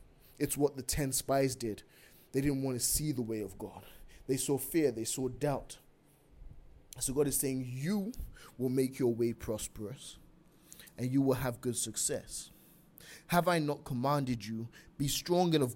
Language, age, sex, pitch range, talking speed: English, 20-39, male, 125-145 Hz, 175 wpm